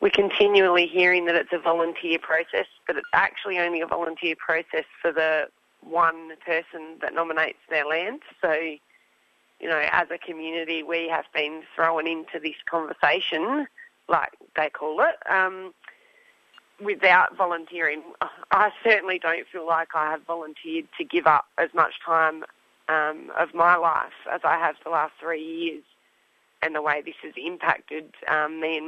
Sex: female